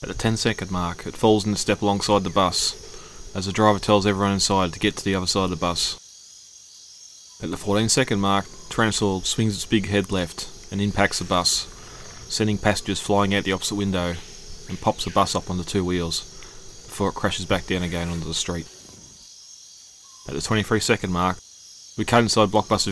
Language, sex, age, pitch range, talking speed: English, male, 20-39, 90-105 Hz, 200 wpm